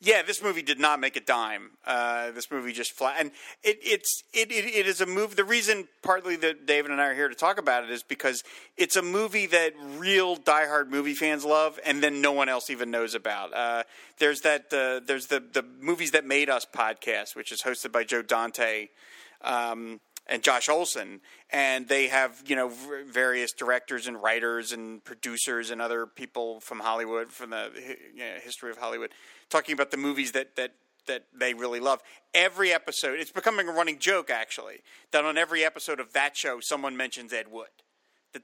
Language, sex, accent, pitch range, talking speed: English, male, American, 120-160 Hz, 205 wpm